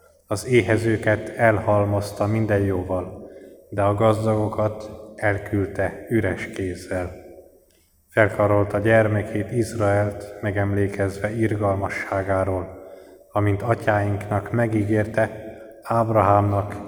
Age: 20-39